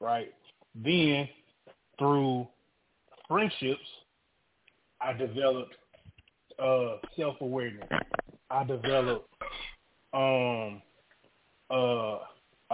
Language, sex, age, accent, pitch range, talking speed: English, male, 20-39, American, 125-150 Hz, 60 wpm